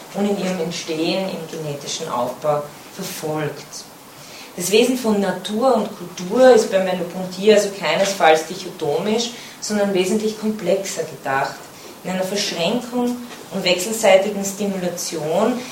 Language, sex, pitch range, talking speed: German, female, 180-225 Hz, 115 wpm